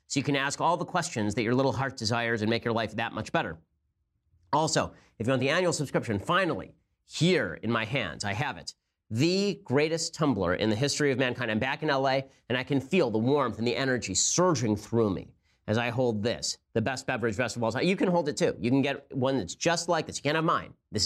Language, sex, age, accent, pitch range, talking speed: English, male, 40-59, American, 110-150 Hz, 240 wpm